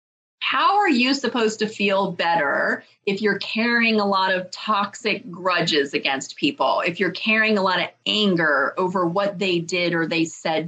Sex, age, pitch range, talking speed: female, 30-49, 170-225 Hz, 175 wpm